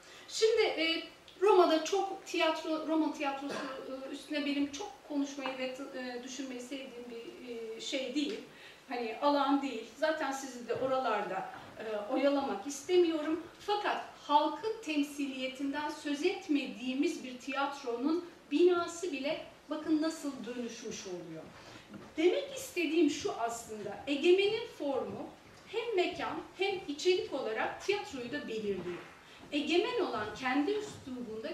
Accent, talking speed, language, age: native, 105 wpm, Turkish, 40-59